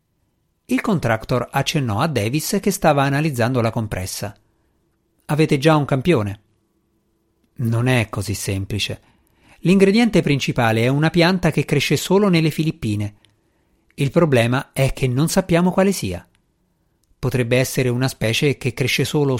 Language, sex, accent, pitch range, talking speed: Italian, male, native, 115-150 Hz, 135 wpm